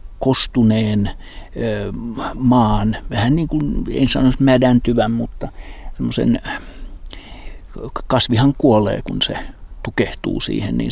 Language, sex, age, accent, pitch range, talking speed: Finnish, male, 60-79, native, 100-120 Hz, 95 wpm